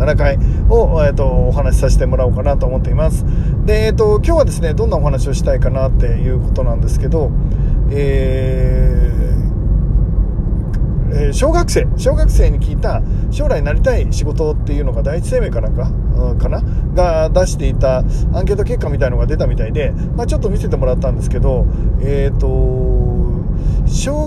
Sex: male